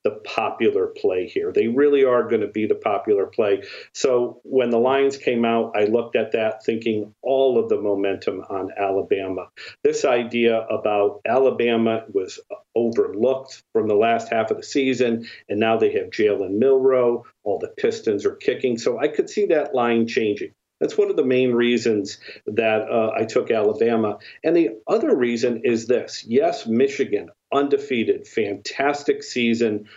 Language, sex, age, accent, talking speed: English, male, 50-69, American, 165 wpm